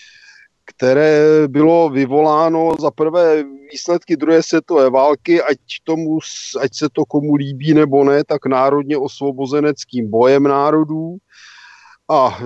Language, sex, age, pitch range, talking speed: Slovak, male, 40-59, 130-155 Hz, 115 wpm